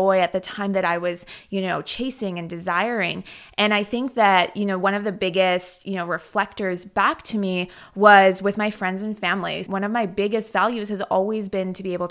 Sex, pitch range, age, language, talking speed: female, 185-220 Hz, 20-39, English, 220 wpm